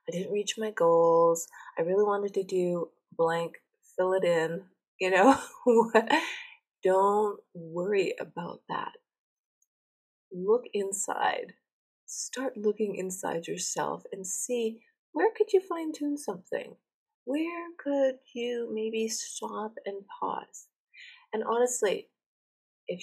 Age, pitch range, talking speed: 30-49, 180-270 Hz, 115 wpm